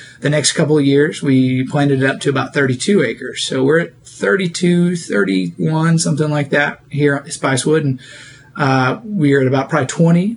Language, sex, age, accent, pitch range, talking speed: English, male, 30-49, American, 135-160 Hz, 180 wpm